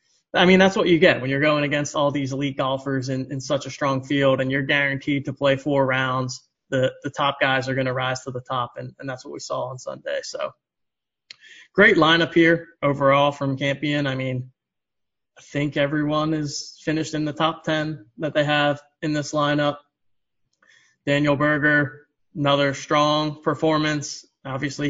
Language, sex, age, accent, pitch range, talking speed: English, male, 20-39, American, 135-155 Hz, 185 wpm